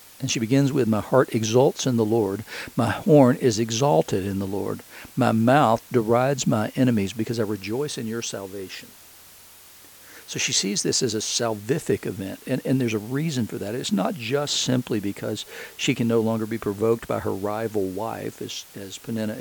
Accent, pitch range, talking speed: American, 105-125 Hz, 190 wpm